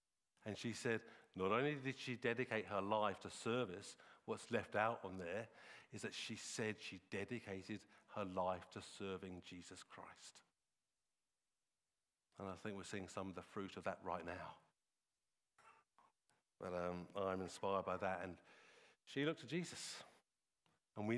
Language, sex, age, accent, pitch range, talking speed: English, male, 50-69, British, 95-115 Hz, 155 wpm